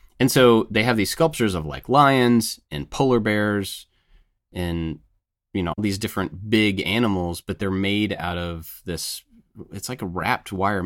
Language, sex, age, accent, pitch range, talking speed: English, male, 30-49, American, 80-100 Hz, 165 wpm